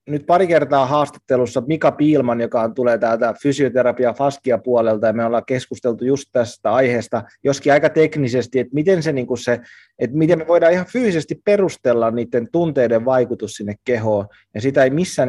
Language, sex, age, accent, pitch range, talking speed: Finnish, male, 20-39, native, 120-150 Hz, 165 wpm